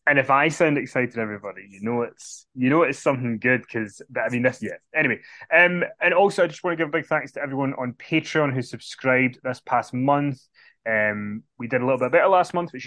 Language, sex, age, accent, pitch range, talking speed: English, male, 20-39, British, 115-140 Hz, 235 wpm